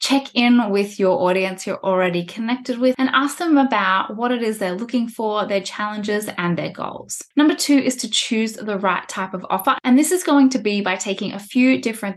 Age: 10-29